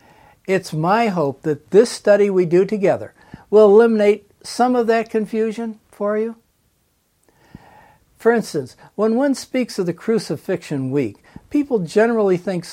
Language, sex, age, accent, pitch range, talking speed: English, male, 60-79, American, 160-220 Hz, 135 wpm